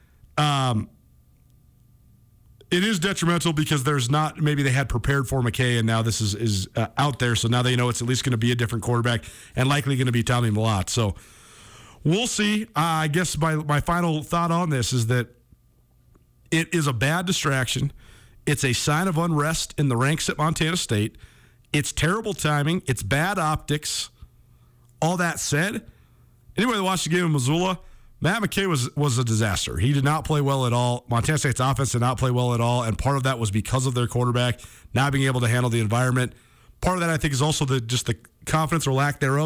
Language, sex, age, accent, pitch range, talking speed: English, male, 40-59, American, 120-155 Hz, 210 wpm